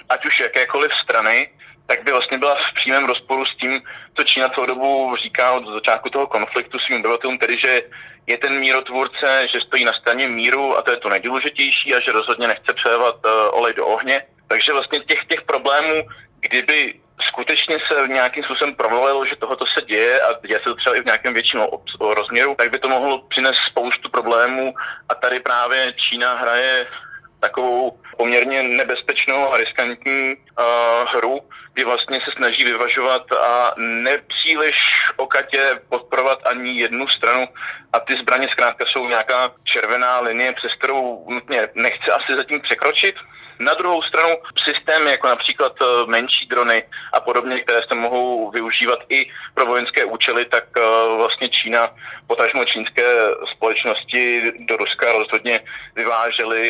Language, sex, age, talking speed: Slovak, male, 30-49, 155 wpm